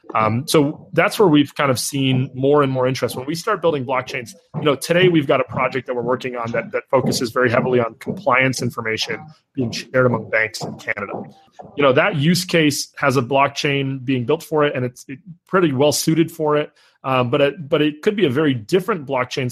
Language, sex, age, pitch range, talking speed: English, male, 30-49, 120-145 Hz, 220 wpm